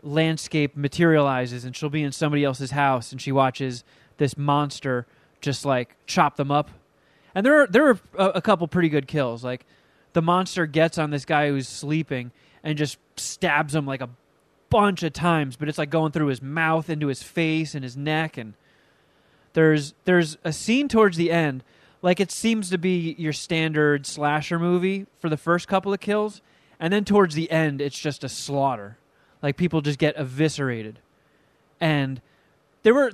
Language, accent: English, American